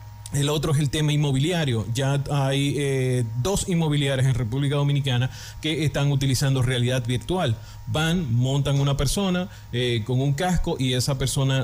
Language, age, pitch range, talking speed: Spanish, 30-49, 120-150 Hz, 155 wpm